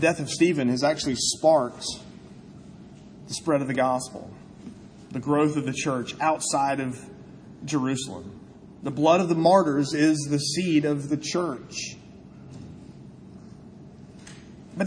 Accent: American